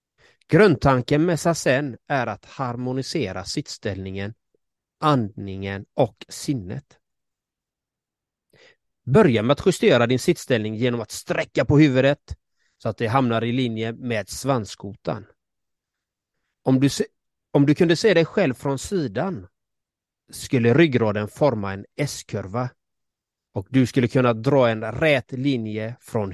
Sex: male